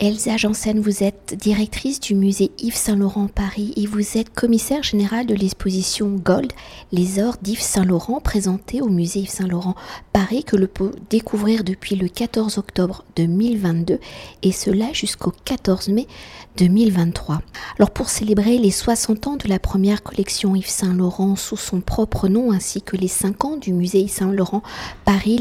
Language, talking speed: French, 165 wpm